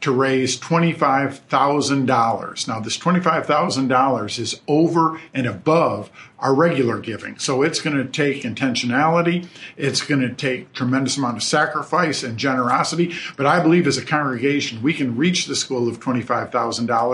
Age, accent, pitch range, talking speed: 50-69, American, 120-140 Hz, 140 wpm